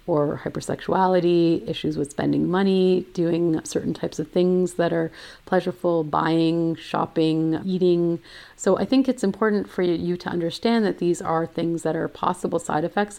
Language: English